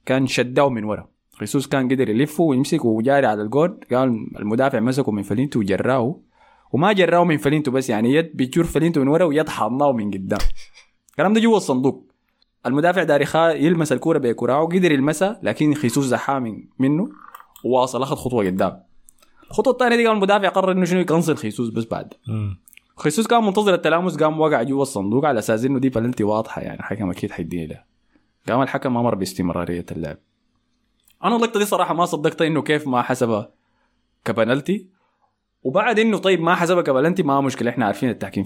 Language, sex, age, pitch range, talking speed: Arabic, male, 20-39, 115-165 Hz, 170 wpm